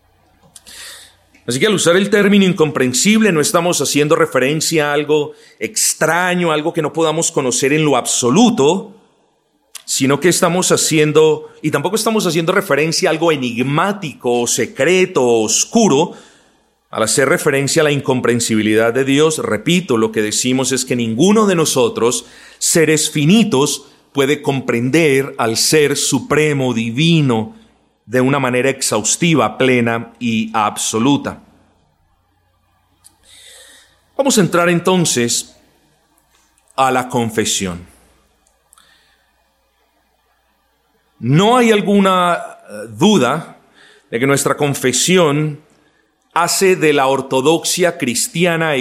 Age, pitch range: 40-59, 120-170 Hz